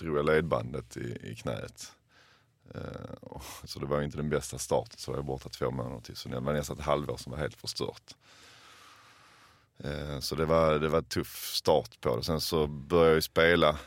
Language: Swedish